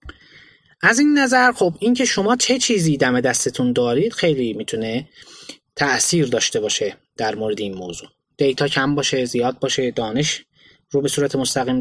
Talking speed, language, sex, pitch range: 160 wpm, Persian, male, 130-190 Hz